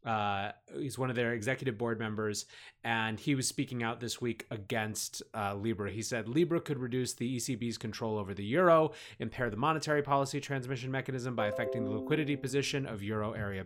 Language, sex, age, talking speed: English, male, 30-49, 190 wpm